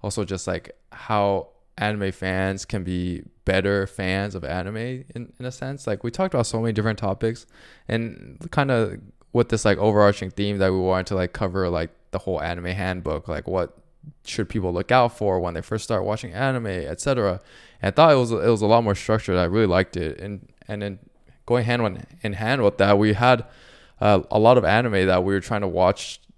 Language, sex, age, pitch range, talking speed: English, male, 20-39, 95-115 Hz, 210 wpm